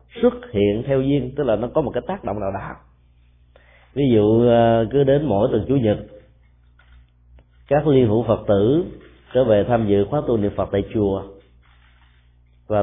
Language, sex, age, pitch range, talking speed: Vietnamese, male, 30-49, 95-140 Hz, 180 wpm